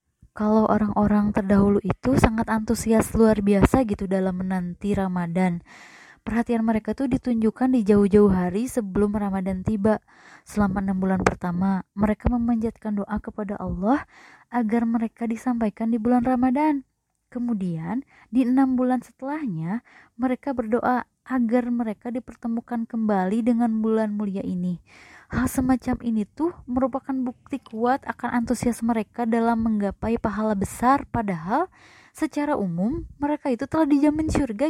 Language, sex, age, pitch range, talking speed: Indonesian, female, 20-39, 210-255 Hz, 130 wpm